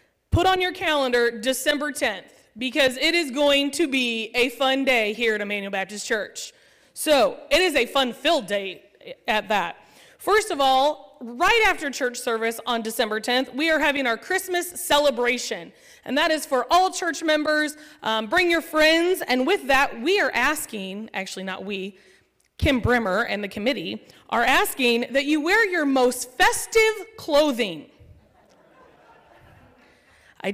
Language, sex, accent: English, female, American